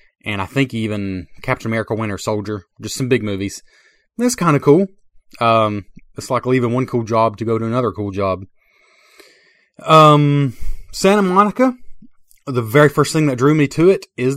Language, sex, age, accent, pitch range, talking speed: English, male, 30-49, American, 110-155 Hz, 175 wpm